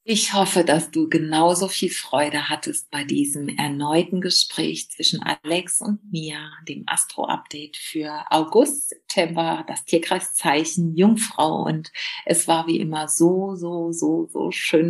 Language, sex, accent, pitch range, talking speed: German, female, German, 160-195 Hz, 135 wpm